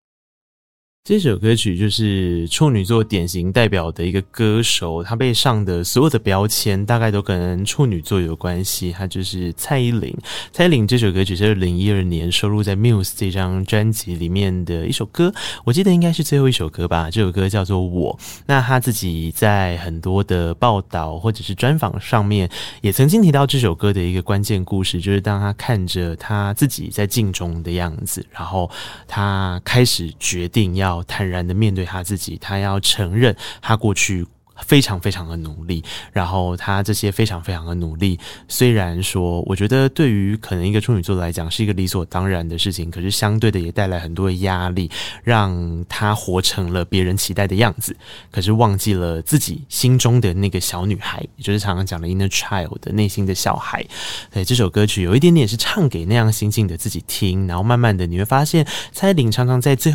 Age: 20-39